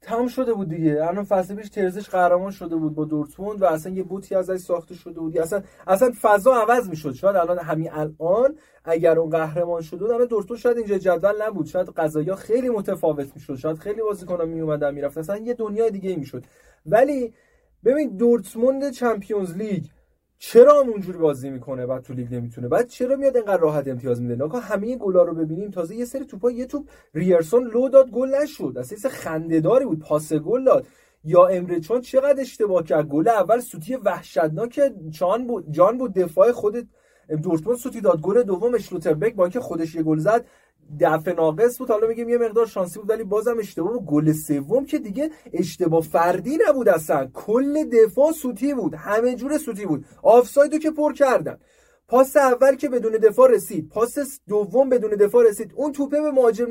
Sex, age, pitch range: male, 30-49, 165-250 Hz